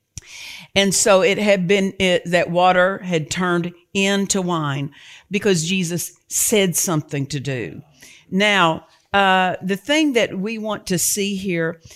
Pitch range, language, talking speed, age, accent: 165-215 Hz, English, 135 wpm, 50-69, American